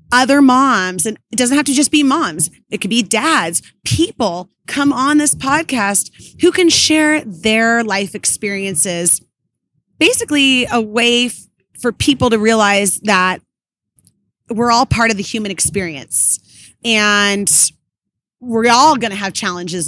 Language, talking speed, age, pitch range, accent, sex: English, 140 wpm, 30-49, 200-275 Hz, American, female